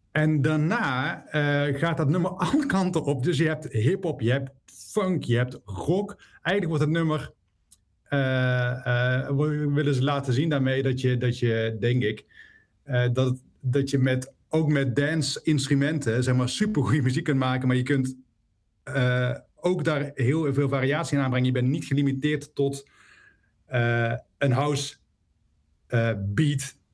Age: 50-69